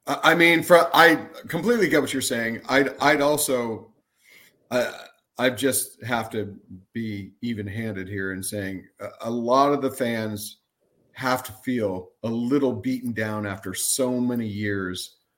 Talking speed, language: 150 wpm, English